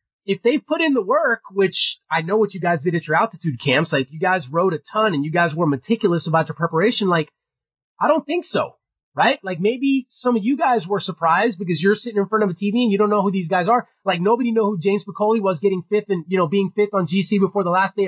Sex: male